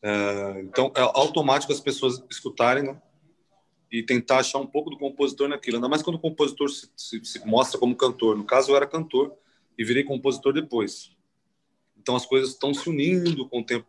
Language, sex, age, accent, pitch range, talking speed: Portuguese, male, 30-49, Brazilian, 120-155 Hz, 190 wpm